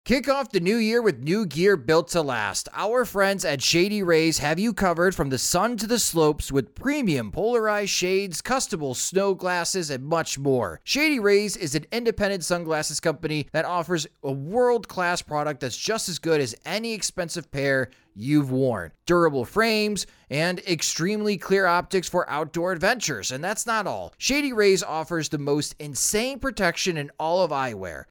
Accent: American